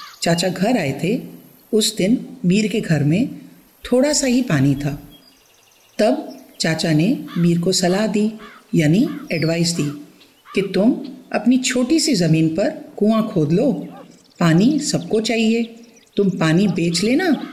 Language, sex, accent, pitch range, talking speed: Hindi, female, native, 175-245 Hz, 145 wpm